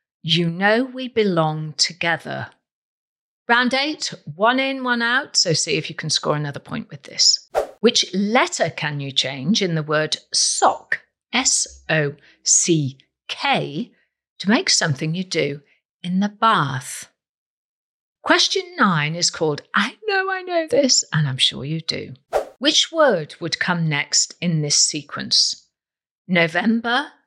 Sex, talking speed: female, 145 wpm